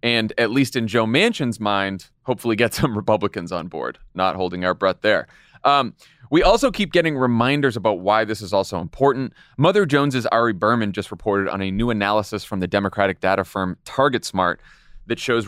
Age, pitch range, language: 30-49, 100-135 Hz, English